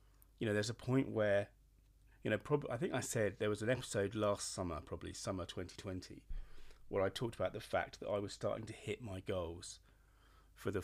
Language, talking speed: English, 205 wpm